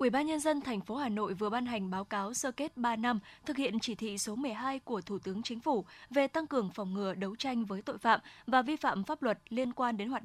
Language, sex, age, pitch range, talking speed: Vietnamese, female, 20-39, 215-265 Hz, 275 wpm